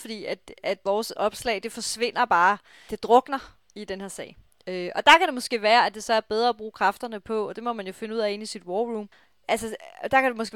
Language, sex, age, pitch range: Danish, female, 30-49, 210-245 Hz